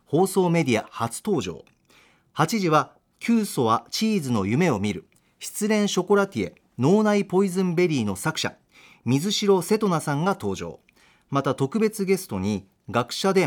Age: 40-59